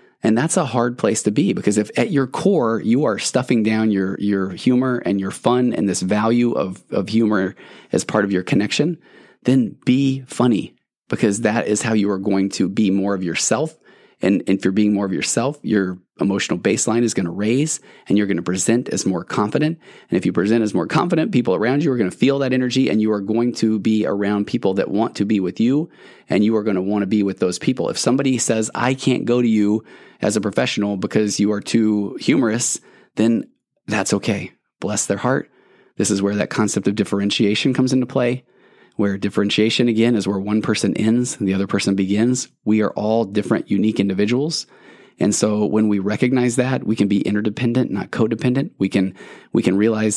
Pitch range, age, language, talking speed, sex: 100-120 Hz, 20-39, English, 215 wpm, male